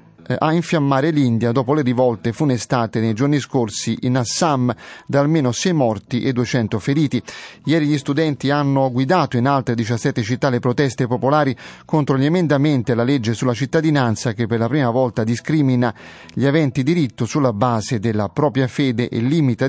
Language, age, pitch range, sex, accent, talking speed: Italian, 30-49, 120-150 Hz, male, native, 165 wpm